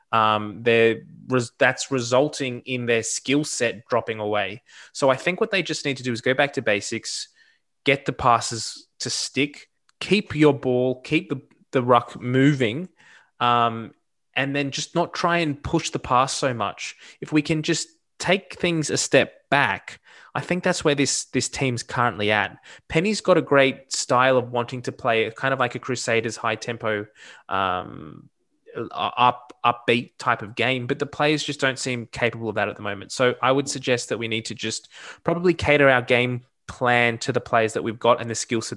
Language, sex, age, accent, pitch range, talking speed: English, male, 20-39, Australian, 115-140 Hz, 190 wpm